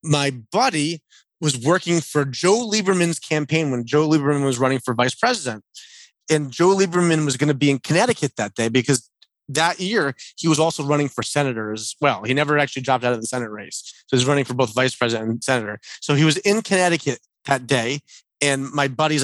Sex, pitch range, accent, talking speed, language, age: male, 130-160 Hz, American, 210 wpm, English, 30-49